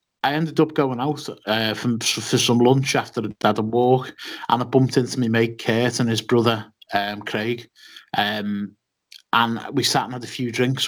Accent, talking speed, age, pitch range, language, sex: British, 200 wpm, 30-49, 110-135 Hz, English, male